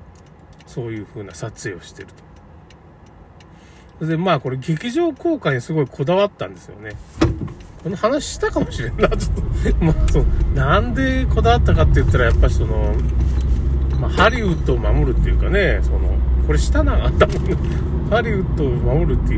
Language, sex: Japanese, male